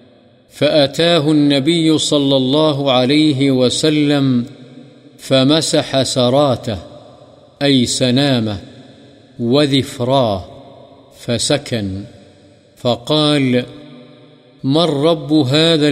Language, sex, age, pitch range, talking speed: Urdu, male, 50-69, 125-150 Hz, 60 wpm